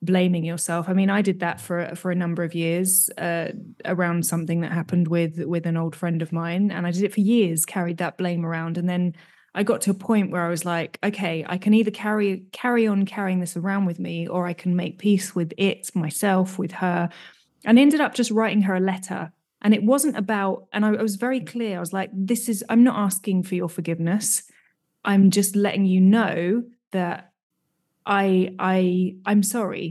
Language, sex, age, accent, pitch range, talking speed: English, female, 20-39, British, 175-210 Hz, 215 wpm